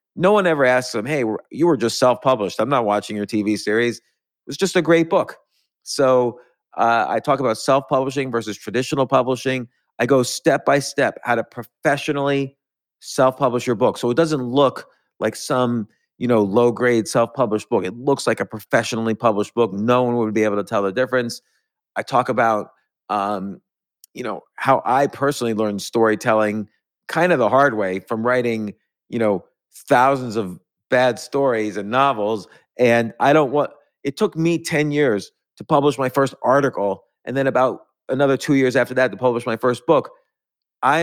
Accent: American